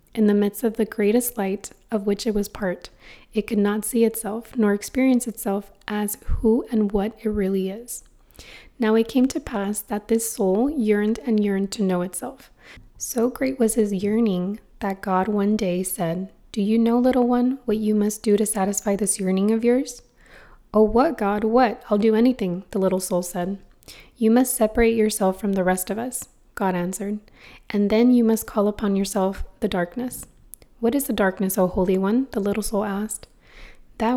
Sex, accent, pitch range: female, American, 200-230 Hz